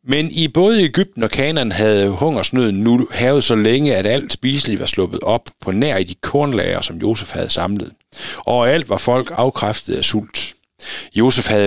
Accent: native